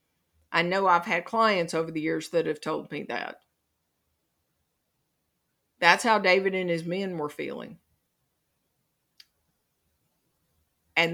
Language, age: English, 50-69